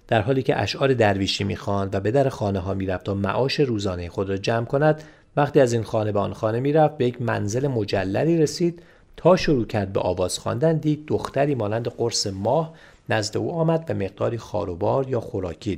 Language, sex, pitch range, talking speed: Persian, male, 100-140 Hz, 190 wpm